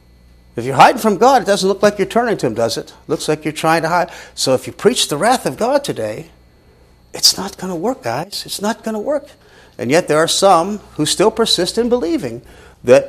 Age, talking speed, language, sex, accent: 50-69, 245 wpm, English, male, American